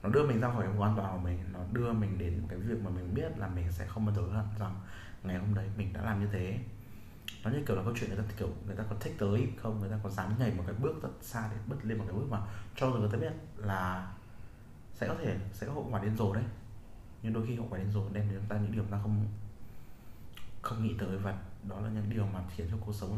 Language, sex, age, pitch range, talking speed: Vietnamese, male, 20-39, 100-115 Hz, 290 wpm